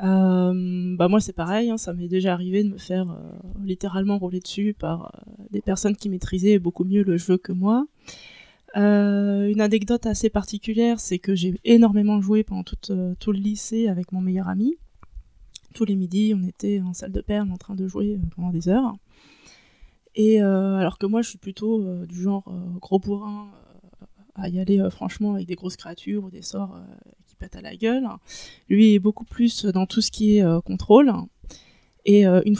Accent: French